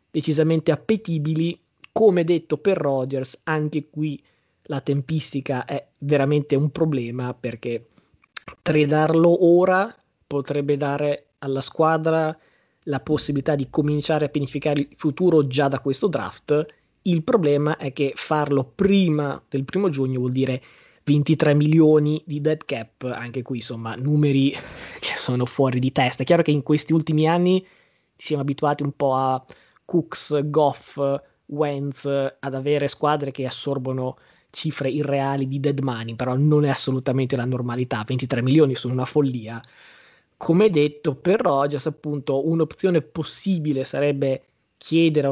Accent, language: native, Italian